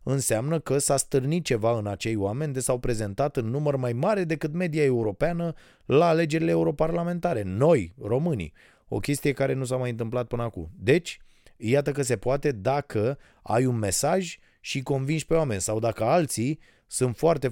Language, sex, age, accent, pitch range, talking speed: Romanian, male, 30-49, native, 95-130 Hz, 170 wpm